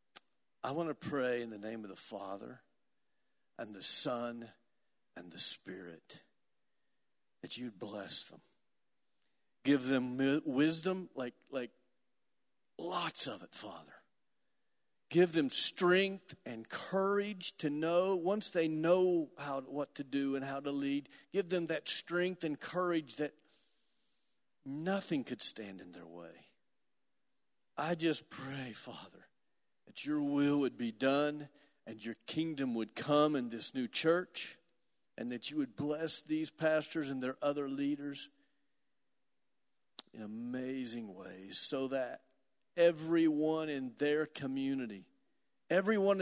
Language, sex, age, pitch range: English, male, 50-69, 130-165 Hz